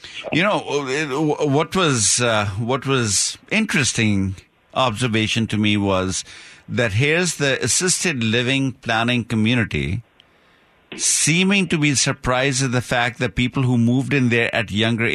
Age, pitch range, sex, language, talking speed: 50-69, 110-135 Hz, male, English, 135 wpm